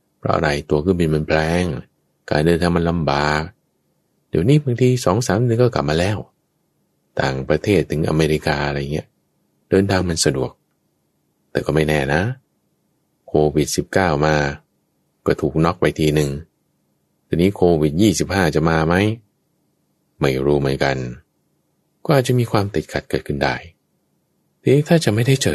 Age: 20-39